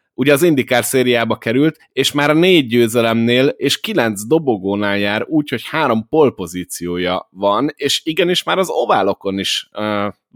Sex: male